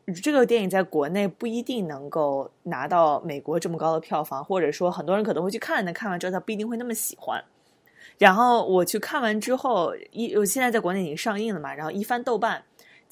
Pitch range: 180-245 Hz